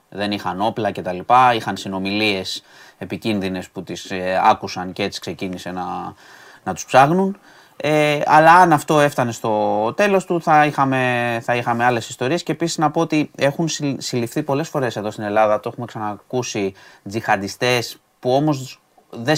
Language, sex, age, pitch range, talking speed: Greek, male, 30-49, 105-150 Hz, 160 wpm